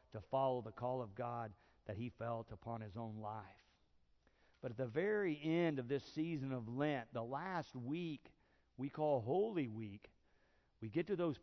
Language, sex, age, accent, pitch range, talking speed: English, male, 50-69, American, 110-155 Hz, 180 wpm